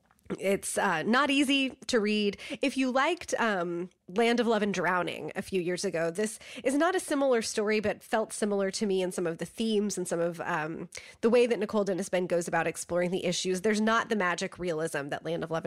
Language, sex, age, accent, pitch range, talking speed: English, female, 20-39, American, 180-230 Hz, 225 wpm